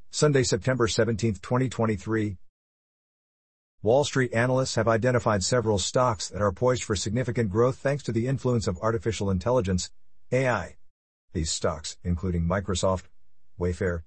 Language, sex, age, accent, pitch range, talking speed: English, male, 50-69, American, 95-125 Hz, 130 wpm